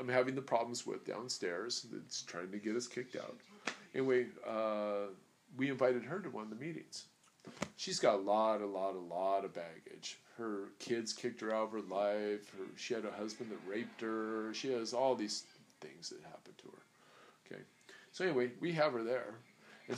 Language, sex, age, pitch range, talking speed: English, male, 40-59, 110-170 Hz, 200 wpm